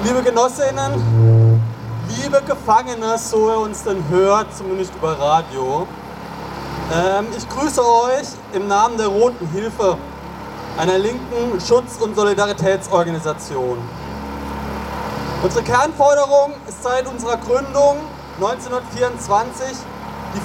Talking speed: 95 wpm